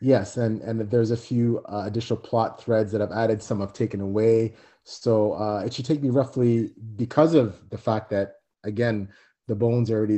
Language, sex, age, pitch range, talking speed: English, male, 30-49, 105-125 Hz, 200 wpm